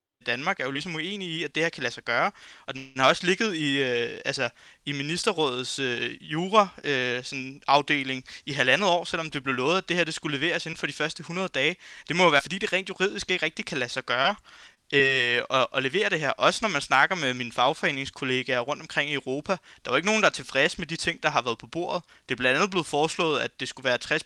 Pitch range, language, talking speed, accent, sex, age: 135-190 Hz, Danish, 260 wpm, native, male, 20-39